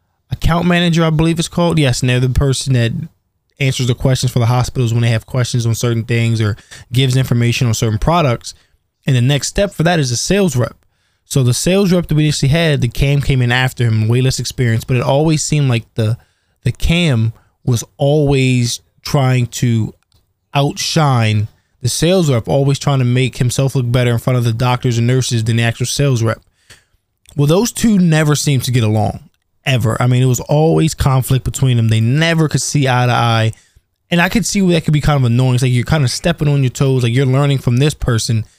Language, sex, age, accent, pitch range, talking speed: English, male, 20-39, American, 115-150 Hz, 220 wpm